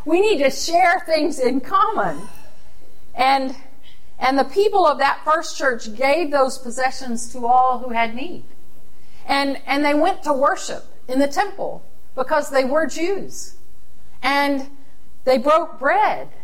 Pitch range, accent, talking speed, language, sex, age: 245-320 Hz, American, 145 wpm, English, female, 50-69